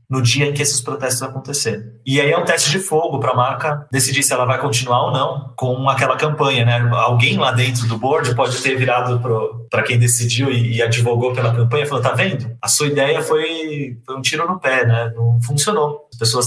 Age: 20-39